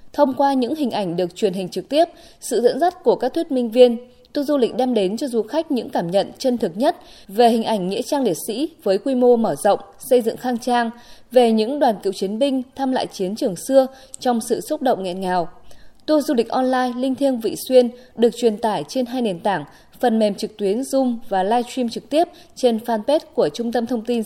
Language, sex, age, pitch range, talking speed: Vietnamese, female, 20-39, 205-265 Hz, 240 wpm